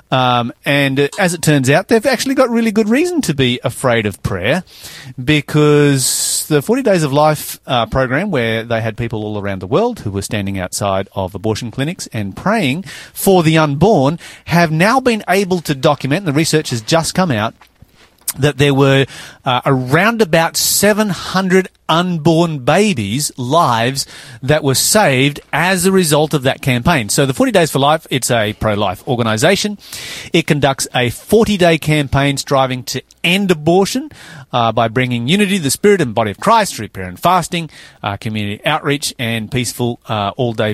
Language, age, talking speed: English, 30-49, 170 wpm